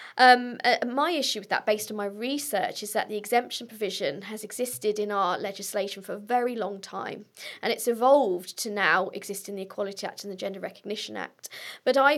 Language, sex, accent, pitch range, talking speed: English, female, British, 205-255 Hz, 205 wpm